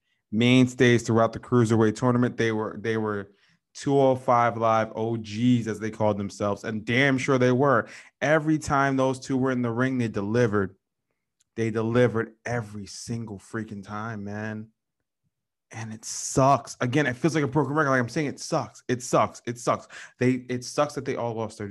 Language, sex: English, male